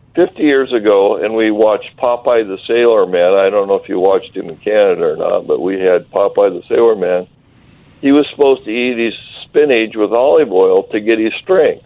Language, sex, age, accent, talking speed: English, male, 60-79, American, 215 wpm